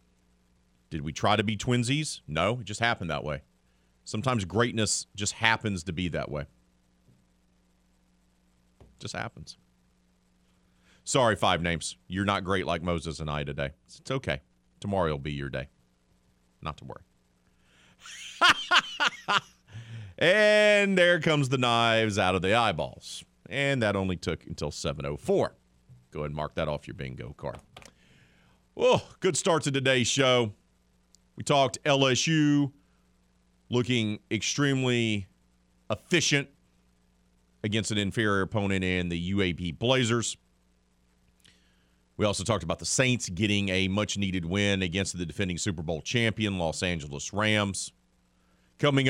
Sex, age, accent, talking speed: male, 40-59, American, 130 wpm